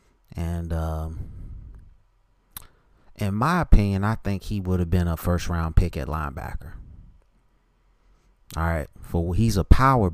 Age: 30-49